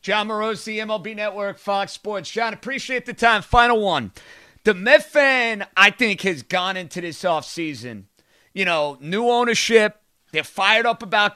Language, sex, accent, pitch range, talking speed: English, male, American, 180-230 Hz, 160 wpm